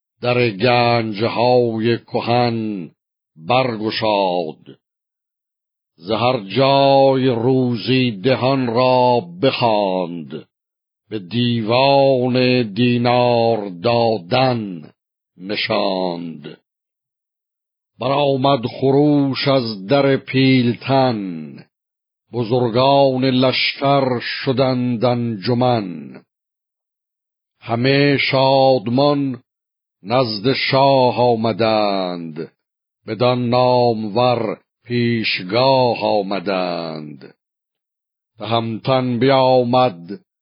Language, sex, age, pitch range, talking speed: Persian, male, 60-79, 115-130 Hz, 60 wpm